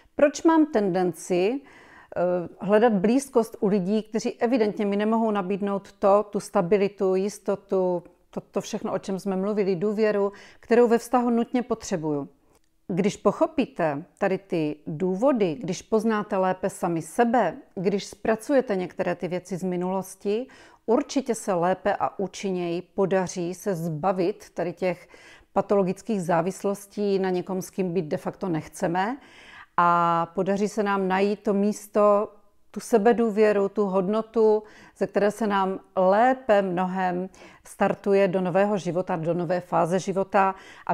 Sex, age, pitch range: female, 40-59, 180-215 Hz